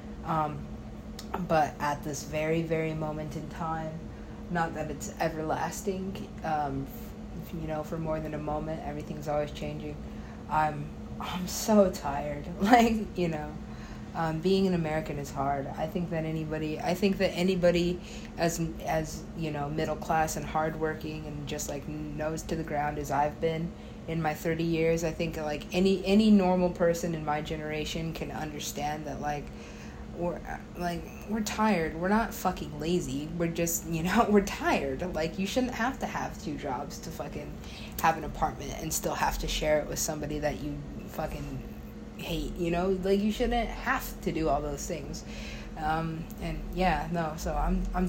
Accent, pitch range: American, 150-180 Hz